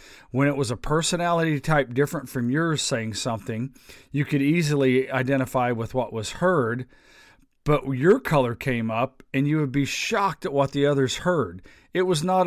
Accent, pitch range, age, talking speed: American, 120-145 Hz, 40-59, 180 wpm